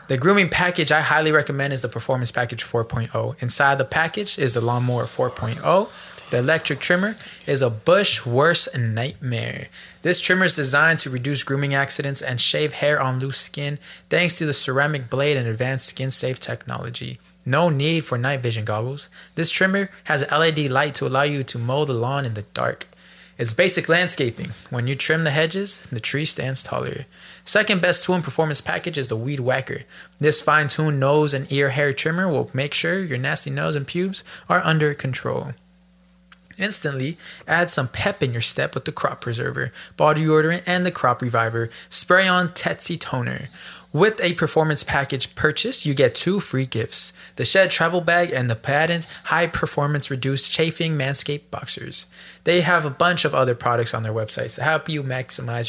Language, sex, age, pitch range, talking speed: English, male, 20-39, 130-165 Hz, 180 wpm